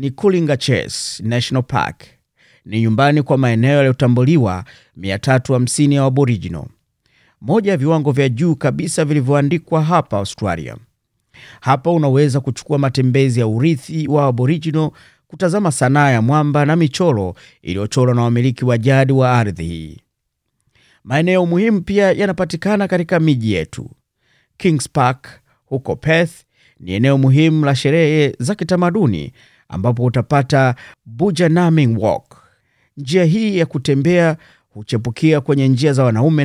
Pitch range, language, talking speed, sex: 125-160 Hz, Swahili, 130 wpm, male